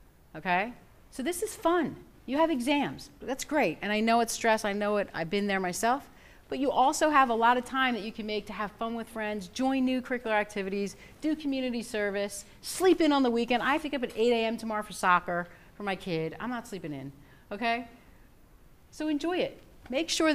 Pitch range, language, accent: 210-275 Hz, English, American